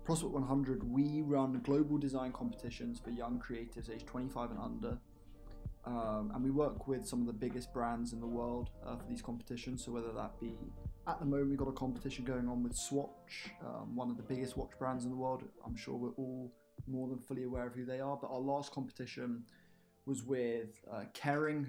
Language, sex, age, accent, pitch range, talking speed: English, male, 20-39, British, 120-140 Hz, 210 wpm